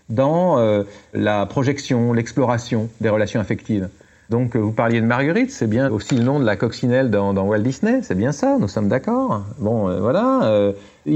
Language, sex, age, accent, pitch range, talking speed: French, male, 40-59, French, 105-145 Hz, 195 wpm